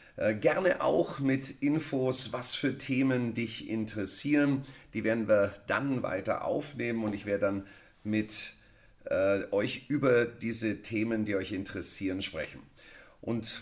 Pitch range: 115-140 Hz